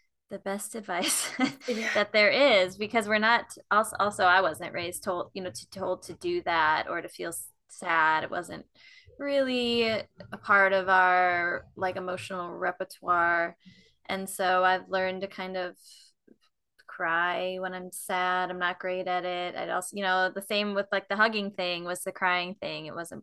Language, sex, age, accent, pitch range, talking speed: English, female, 20-39, American, 180-215 Hz, 180 wpm